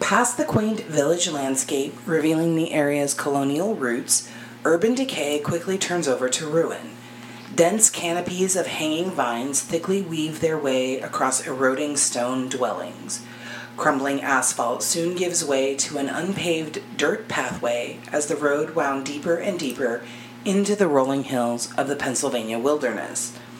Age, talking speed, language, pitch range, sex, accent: 30-49, 140 wpm, English, 120-165 Hz, female, American